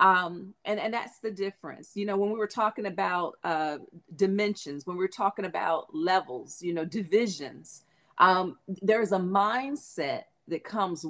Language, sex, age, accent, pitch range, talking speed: English, female, 40-59, American, 180-220 Hz, 155 wpm